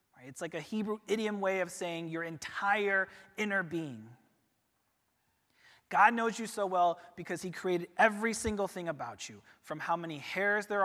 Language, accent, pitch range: English, American, 150-215 Hz